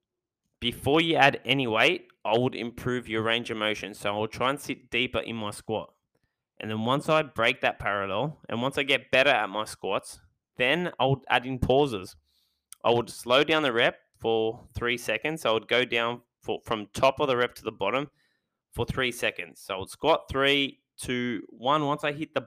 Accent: Australian